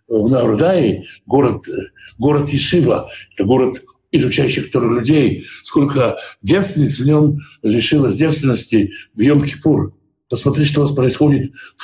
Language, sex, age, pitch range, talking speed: Russian, male, 60-79, 120-160 Hz, 115 wpm